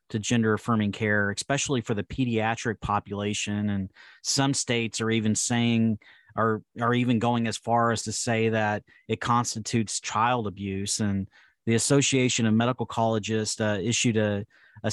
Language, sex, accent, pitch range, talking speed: English, male, American, 110-120 Hz, 155 wpm